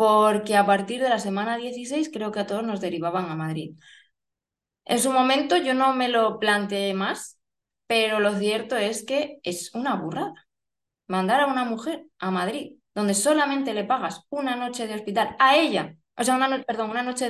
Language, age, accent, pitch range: Spanish, 20-39, Spanish, 195-250 Hz